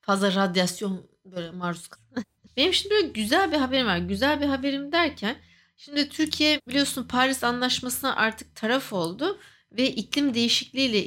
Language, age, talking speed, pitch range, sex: English, 60-79, 140 wpm, 195-290 Hz, female